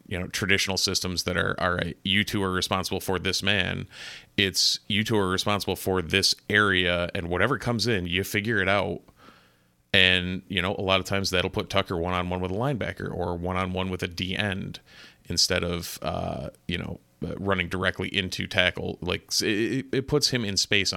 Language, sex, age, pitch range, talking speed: English, male, 30-49, 90-105 Hz, 190 wpm